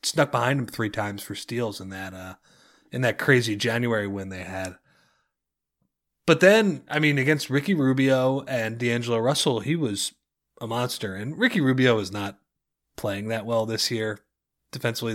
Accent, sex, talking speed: American, male, 165 wpm